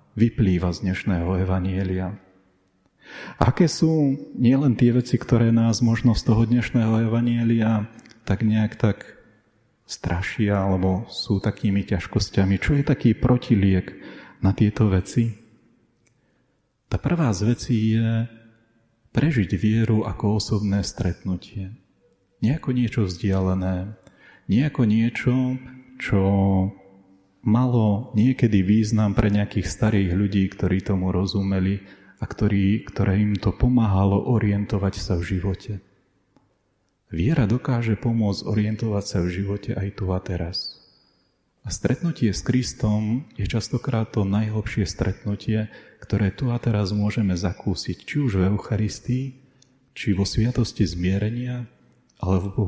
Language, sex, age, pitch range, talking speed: Slovak, male, 30-49, 95-120 Hz, 115 wpm